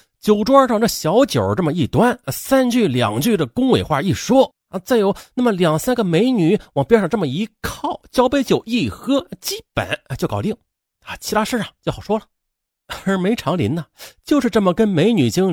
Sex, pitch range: male, 140-230 Hz